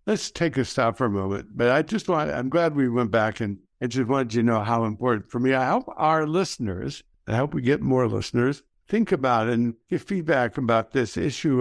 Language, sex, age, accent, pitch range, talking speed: English, male, 60-79, American, 115-150 Hz, 235 wpm